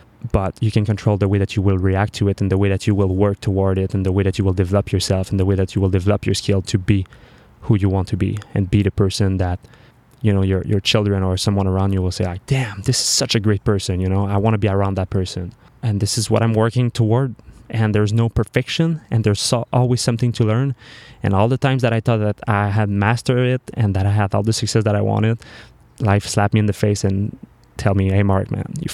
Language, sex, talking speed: English, male, 270 wpm